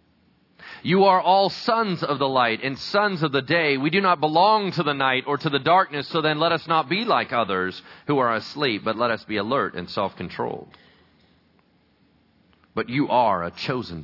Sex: male